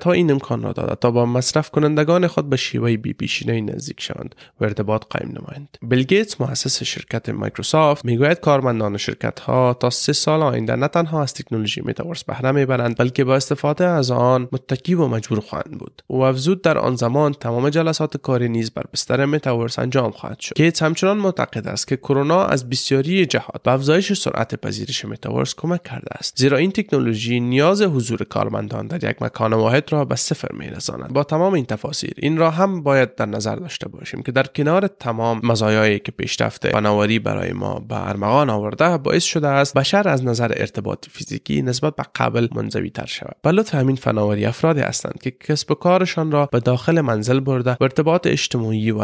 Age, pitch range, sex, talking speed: 30-49, 120-155 Hz, male, 180 wpm